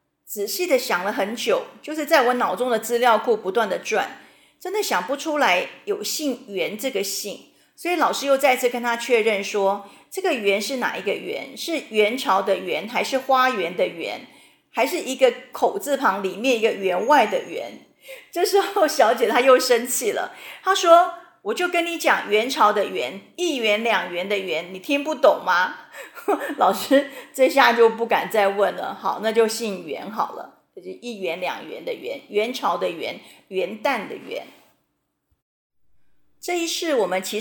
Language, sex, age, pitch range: Chinese, female, 40-59, 215-320 Hz